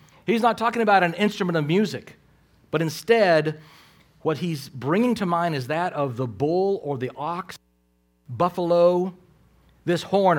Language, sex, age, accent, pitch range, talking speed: English, male, 40-59, American, 125-170 Hz, 150 wpm